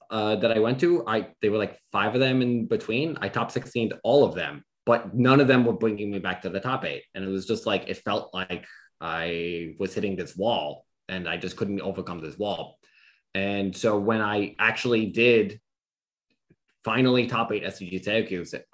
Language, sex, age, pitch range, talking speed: English, male, 20-39, 95-115 Hz, 200 wpm